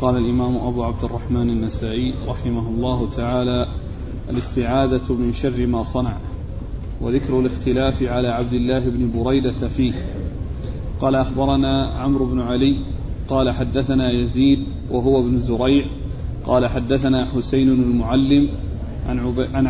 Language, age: Arabic, 40-59